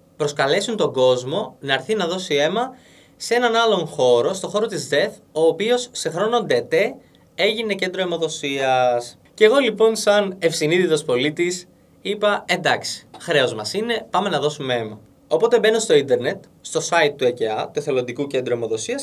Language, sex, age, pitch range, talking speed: Greek, male, 20-39, 135-215 Hz, 160 wpm